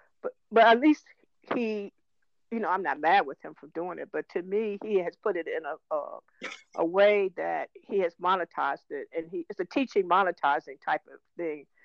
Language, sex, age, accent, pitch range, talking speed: English, female, 50-69, American, 185-275 Hz, 210 wpm